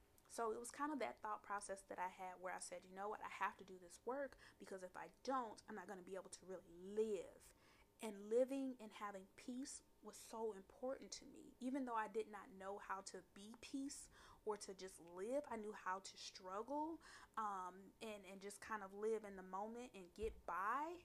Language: English